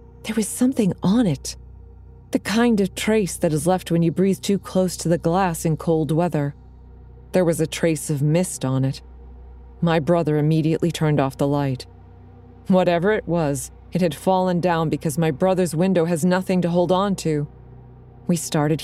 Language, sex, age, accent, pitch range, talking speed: English, female, 30-49, American, 140-185 Hz, 180 wpm